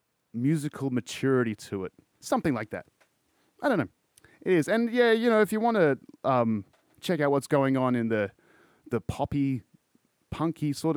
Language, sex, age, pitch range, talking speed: English, male, 30-49, 110-160 Hz, 175 wpm